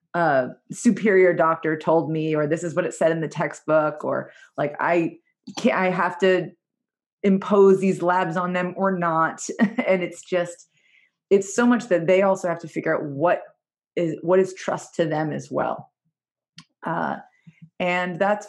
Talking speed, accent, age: 175 wpm, American, 30-49